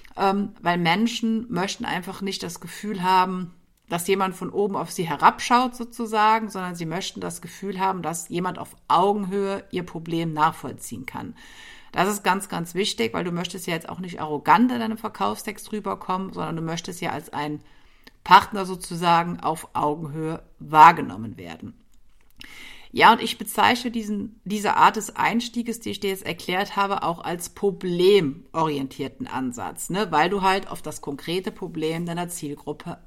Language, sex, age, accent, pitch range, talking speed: German, female, 50-69, German, 170-215 Hz, 160 wpm